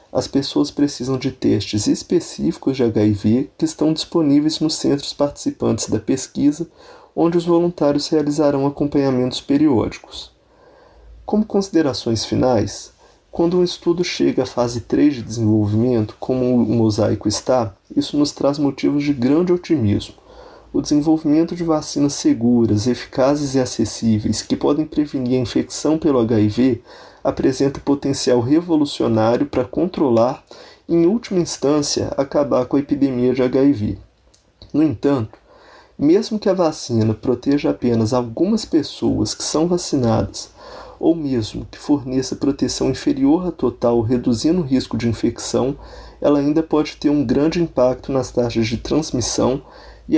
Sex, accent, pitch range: male, Brazilian, 120-160 Hz